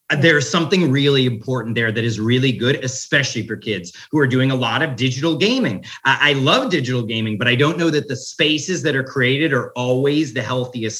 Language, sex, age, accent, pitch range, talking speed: English, male, 30-49, American, 120-150 Hz, 205 wpm